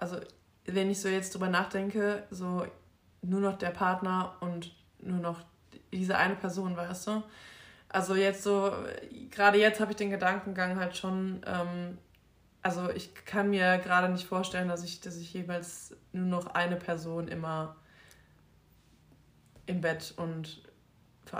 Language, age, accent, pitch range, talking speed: German, 20-39, German, 170-190 Hz, 145 wpm